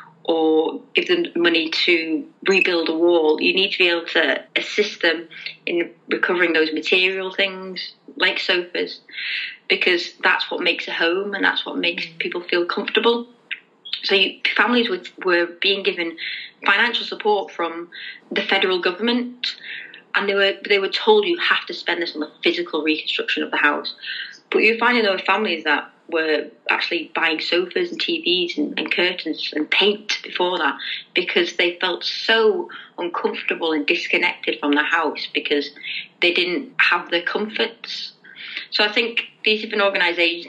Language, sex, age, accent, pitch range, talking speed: English, female, 30-49, British, 170-230 Hz, 160 wpm